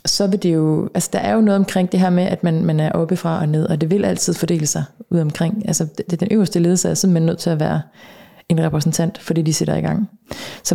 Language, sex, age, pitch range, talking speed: Danish, female, 30-49, 160-190 Hz, 295 wpm